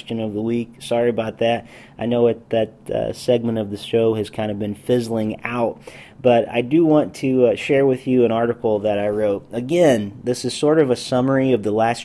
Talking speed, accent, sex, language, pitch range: 225 wpm, American, male, English, 110-130 Hz